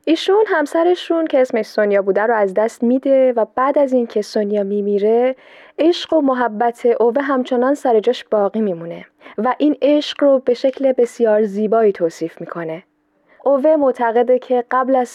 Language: Persian